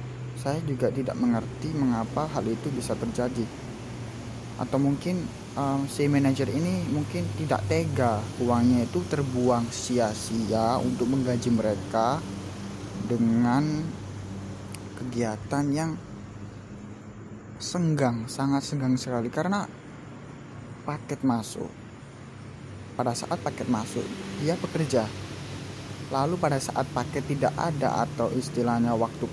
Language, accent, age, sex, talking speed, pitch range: Indonesian, native, 20-39, male, 100 wpm, 115-150 Hz